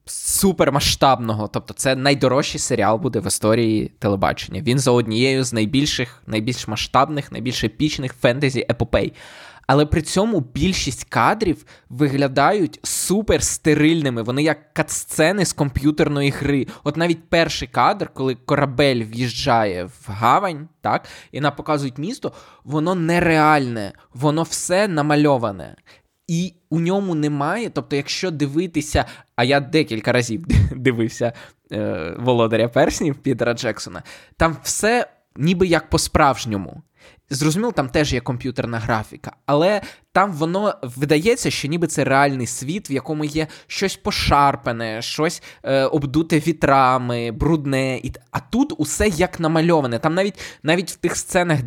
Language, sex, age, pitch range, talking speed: Ukrainian, male, 20-39, 125-160 Hz, 130 wpm